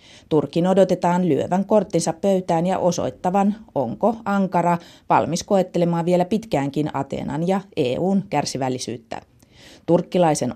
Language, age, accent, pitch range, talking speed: Finnish, 30-49, native, 145-185 Hz, 100 wpm